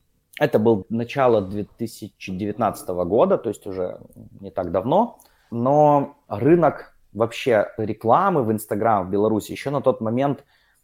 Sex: male